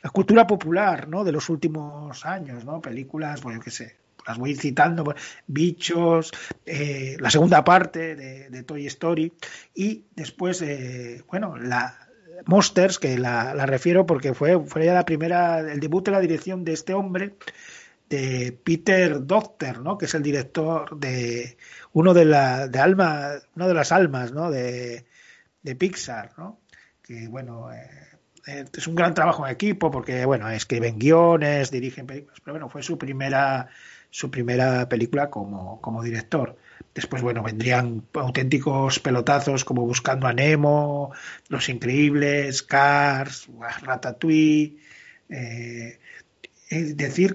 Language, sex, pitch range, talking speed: Spanish, male, 130-170 Hz, 145 wpm